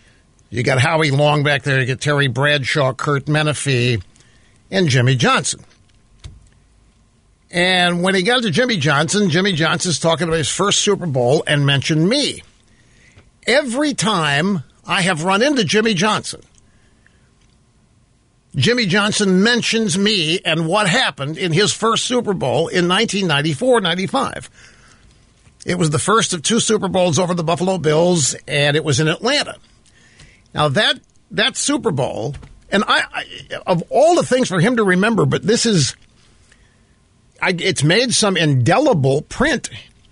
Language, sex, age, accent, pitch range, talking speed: English, male, 50-69, American, 140-195 Hz, 145 wpm